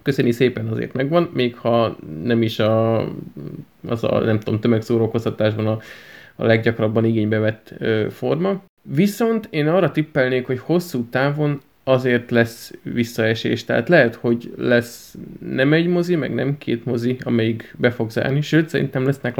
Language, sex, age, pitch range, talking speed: Hungarian, male, 20-39, 115-140 Hz, 140 wpm